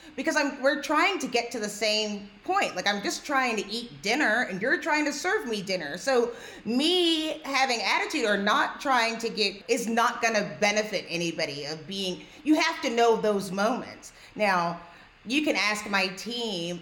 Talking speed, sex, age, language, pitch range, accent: 185 wpm, female, 30-49, English, 190-255 Hz, American